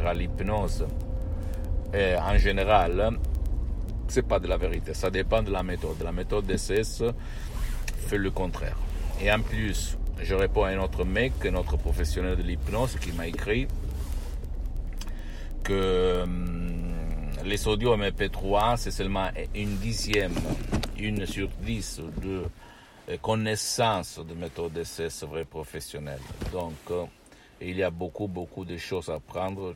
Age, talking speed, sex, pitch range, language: 60-79, 135 wpm, male, 85-105 Hz, Italian